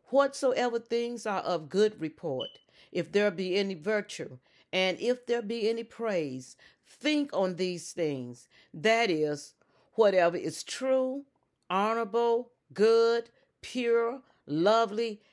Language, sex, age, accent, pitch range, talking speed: English, female, 40-59, American, 170-230 Hz, 115 wpm